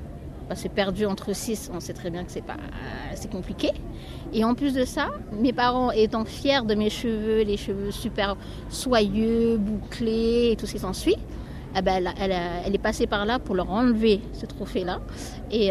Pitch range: 190-240 Hz